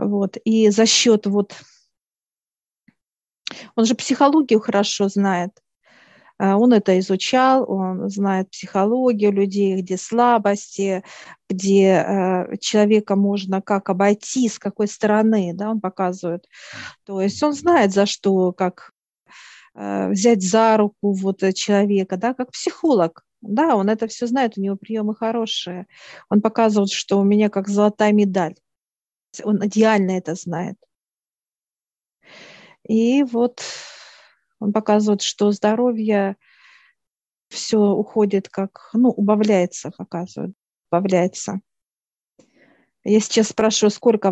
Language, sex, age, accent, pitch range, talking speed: Russian, female, 40-59, native, 195-220 Hz, 110 wpm